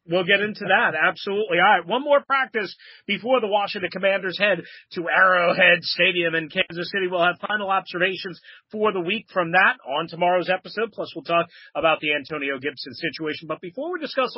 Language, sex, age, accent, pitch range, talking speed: English, male, 40-59, American, 165-205 Hz, 190 wpm